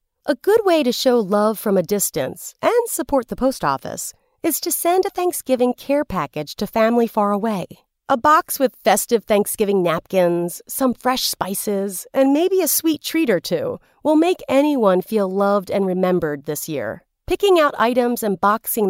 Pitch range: 200-280 Hz